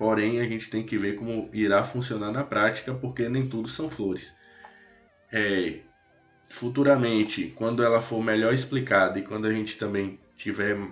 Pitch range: 100-120 Hz